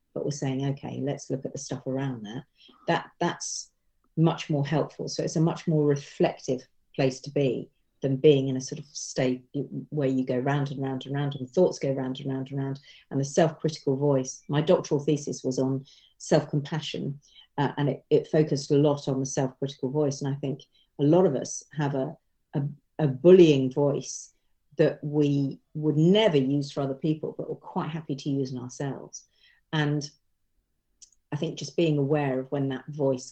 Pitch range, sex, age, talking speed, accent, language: 135-155 Hz, female, 40-59, 195 wpm, British, English